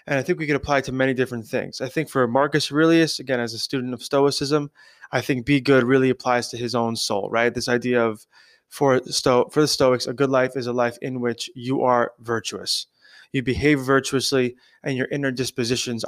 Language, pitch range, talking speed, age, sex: English, 125-145 Hz, 220 wpm, 20-39, male